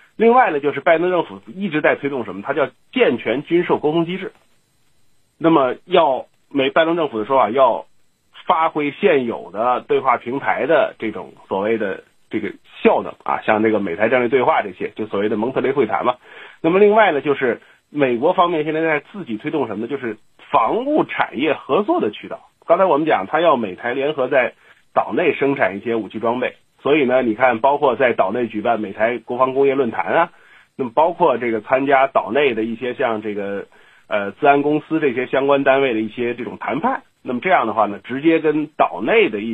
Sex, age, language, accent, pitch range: male, 30-49, Chinese, native, 115-165 Hz